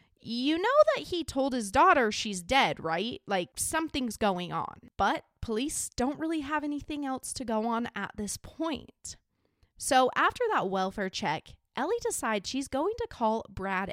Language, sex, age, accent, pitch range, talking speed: English, female, 20-39, American, 210-295 Hz, 170 wpm